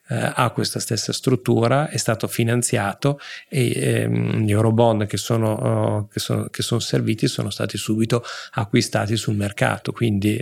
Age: 40-59